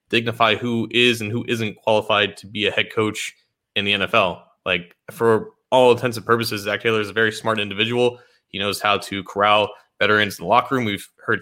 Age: 20-39